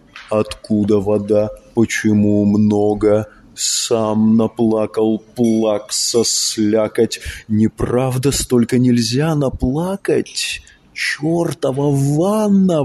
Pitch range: 110-160 Hz